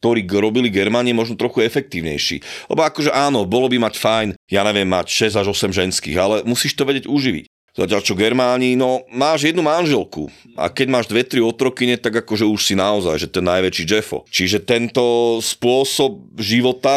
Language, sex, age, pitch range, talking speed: Slovak, male, 30-49, 95-120 Hz, 175 wpm